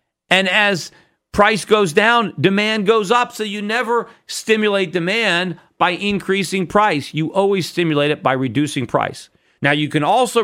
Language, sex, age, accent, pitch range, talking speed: English, male, 40-59, American, 145-200 Hz, 155 wpm